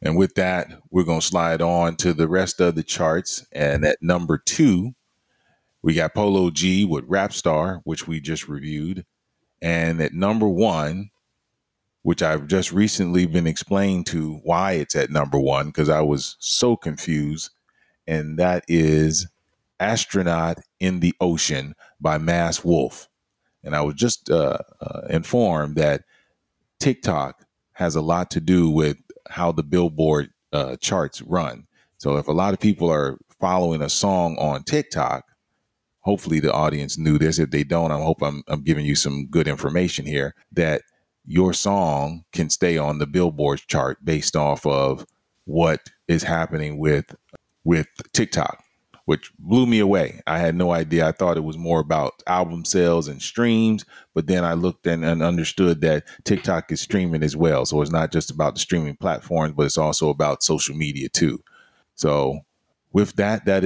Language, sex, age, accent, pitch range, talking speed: English, male, 30-49, American, 75-90 Hz, 170 wpm